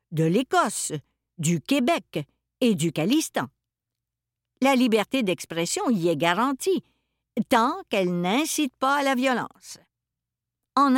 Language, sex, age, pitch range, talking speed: French, female, 50-69, 180-260 Hz, 115 wpm